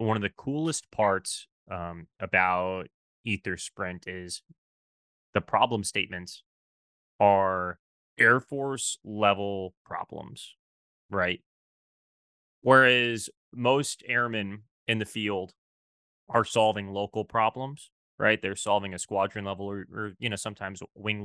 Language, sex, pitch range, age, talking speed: English, male, 90-110 Hz, 20-39, 115 wpm